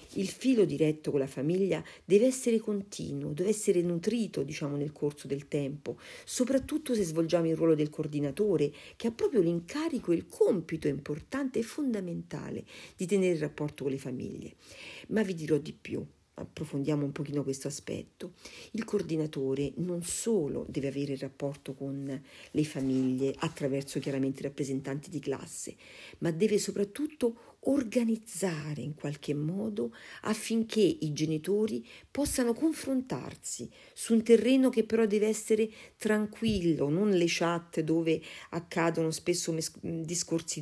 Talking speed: 140 wpm